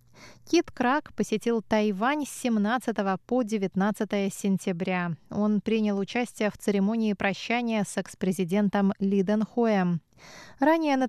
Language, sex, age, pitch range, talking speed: Russian, female, 20-39, 195-240 Hz, 115 wpm